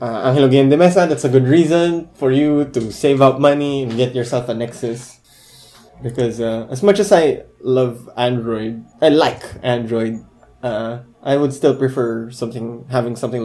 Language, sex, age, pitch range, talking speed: English, male, 20-39, 125-160 Hz, 170 wpm